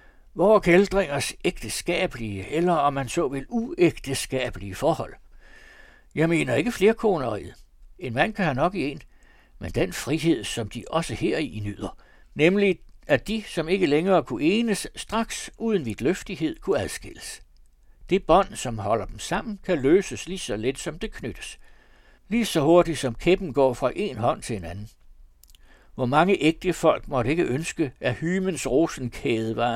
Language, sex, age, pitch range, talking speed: Danish, male, 60-79, 105-175 Hz, 165 wpm